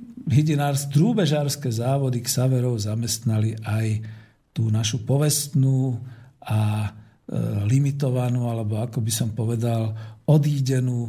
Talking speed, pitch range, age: 90 wpm, 115-155 Hz, 50-69